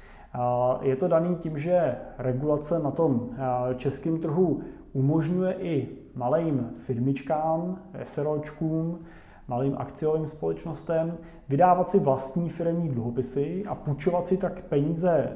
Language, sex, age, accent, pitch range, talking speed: Czech, male, 30-49, native, 130-150 Hz, 110 wpm